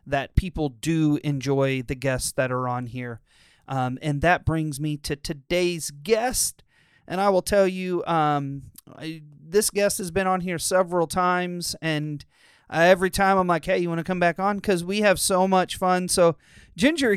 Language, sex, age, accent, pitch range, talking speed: English, male, 40-59, American, 155-205 Hz, 185 wpm